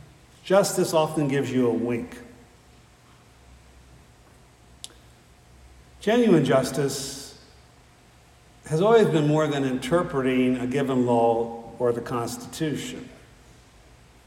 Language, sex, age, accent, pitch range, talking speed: English, male, 60-79, American, 125-175 Hz, 85 wpm